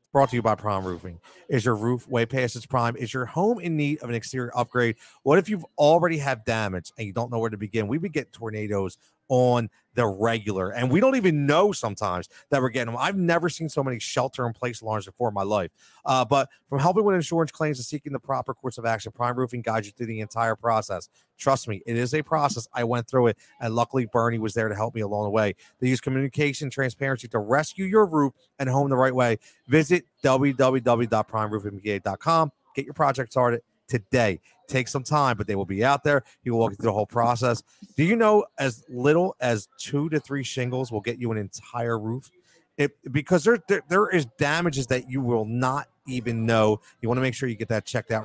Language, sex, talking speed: English, male, 225 wpm